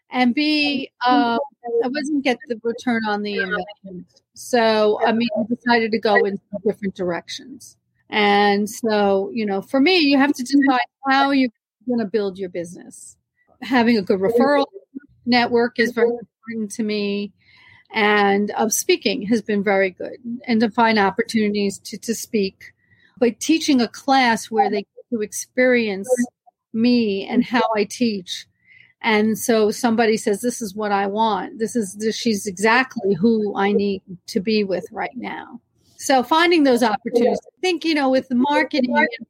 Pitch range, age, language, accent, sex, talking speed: 205-240 Hz, 40-59, English, American, female, 165 wpm